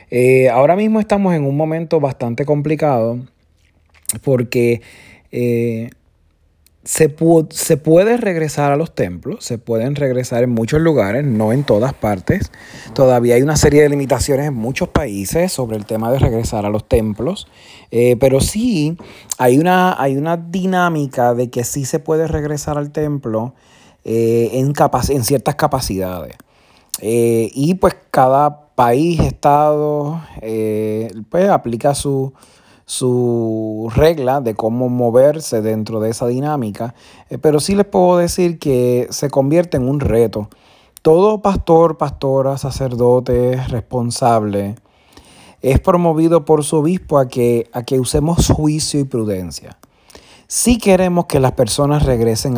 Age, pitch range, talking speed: 30-49, 115-155 Hz, 140 wpm